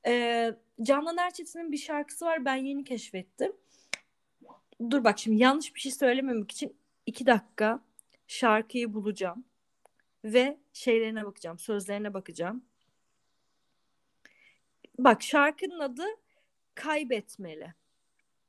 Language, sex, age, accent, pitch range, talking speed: Turkish, female, 30-49, native, 210-280 Hz, 95 wpm